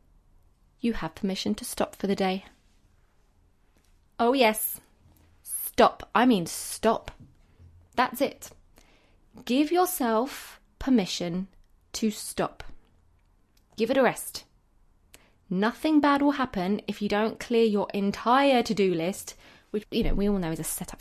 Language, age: English, 20-39